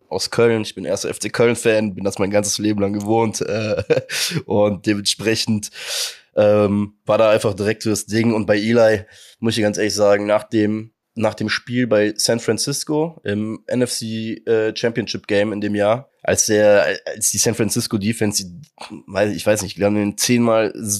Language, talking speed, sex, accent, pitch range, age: German, 180 wpm, male, German, 100-115 Hz, 20-39